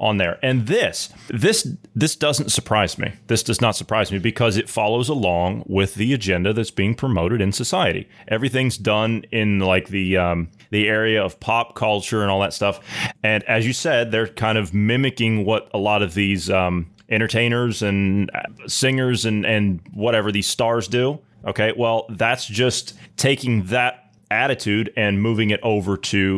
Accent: American